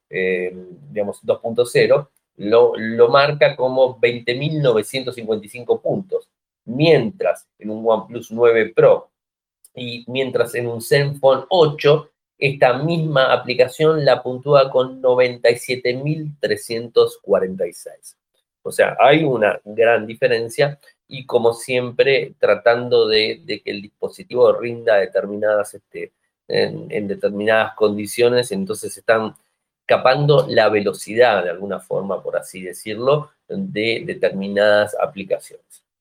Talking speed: 105 wpm